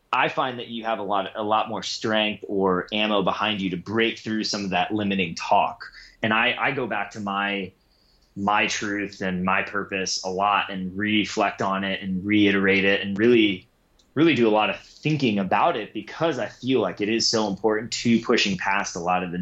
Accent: American